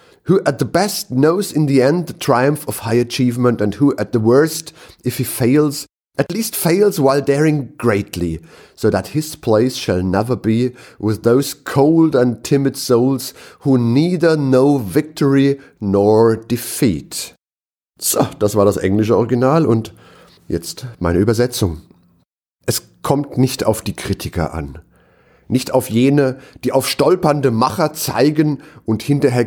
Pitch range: 110-155 Hz